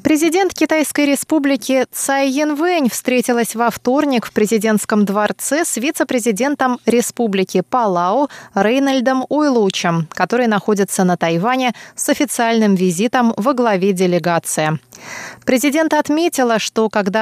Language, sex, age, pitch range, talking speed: Russian, female, 20-39, 200-265 Hz, 110 wpm